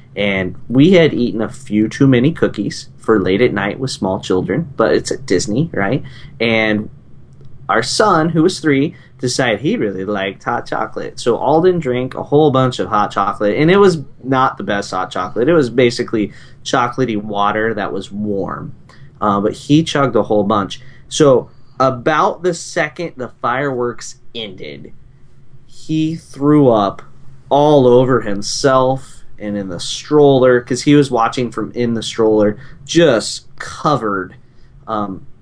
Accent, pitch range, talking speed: American, 105-135 Hz, 160 wpm